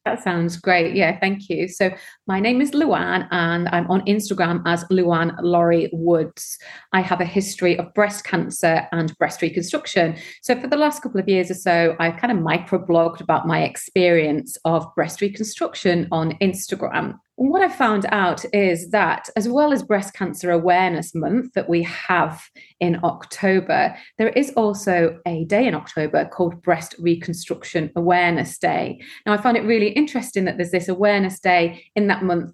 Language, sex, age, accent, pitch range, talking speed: English, female, 30-49, British, 170-210 Hz, 175 wpm